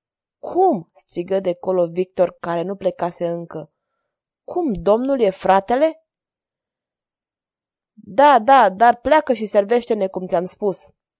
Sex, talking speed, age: female, 120 wpm, 20-39